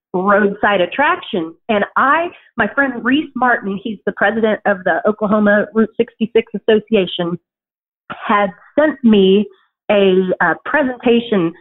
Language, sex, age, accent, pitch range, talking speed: English, female, 40-59, American, 200-245 Hz, 120 wpm